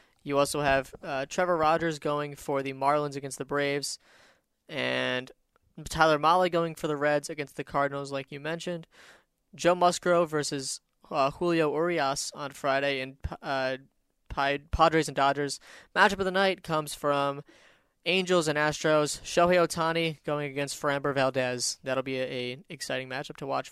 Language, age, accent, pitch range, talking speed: English, 20-39, American, 135-155 Hz, 155 wpm